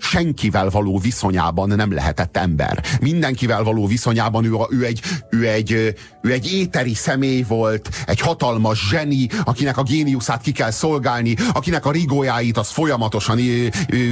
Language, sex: Hungarian, male